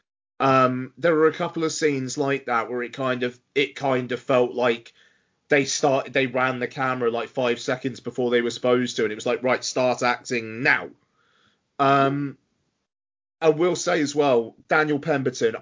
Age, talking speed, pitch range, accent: 30-49, 185 wpm, 125-155 Hz, British